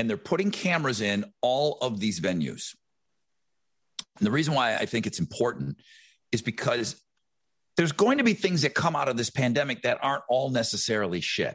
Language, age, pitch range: English, 50-69, 110-150 Hz